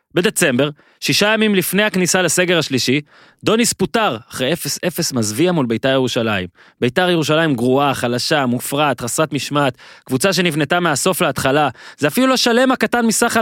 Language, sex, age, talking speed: Hebrew, male, 20-39, 145 wpm